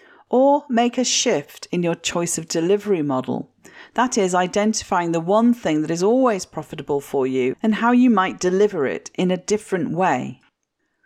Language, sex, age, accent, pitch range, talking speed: English, female, 40-59, British, 160-235 Hz, 175 wpm